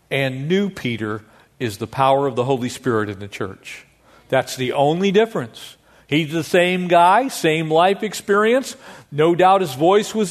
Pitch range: 125-160 Hz